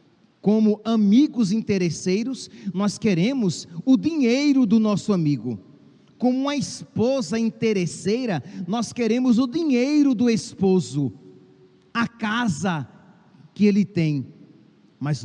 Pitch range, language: 180-230 Hz, Portuguese